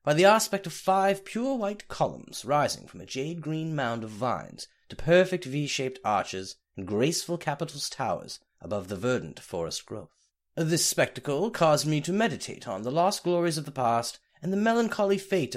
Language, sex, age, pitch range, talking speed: English, male, 30-49, 130-185 Hz, 175 wpm